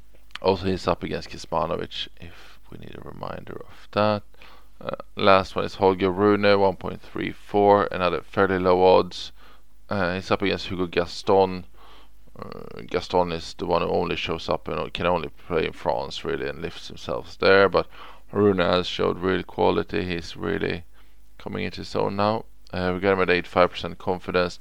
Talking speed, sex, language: 165 wpm, male, English